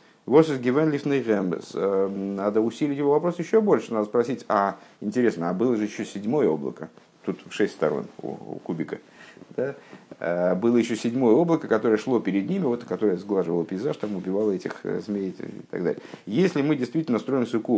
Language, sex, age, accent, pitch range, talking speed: Russian, male, 50-69, native, 100-130 Hz, 170 wpm